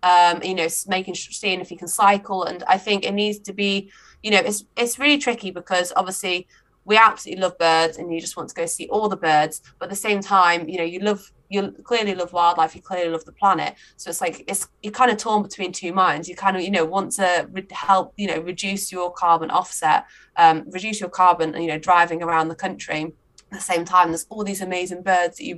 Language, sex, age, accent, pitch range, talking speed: English, female, 20-39, British, 165-195 Hz, 245 wpm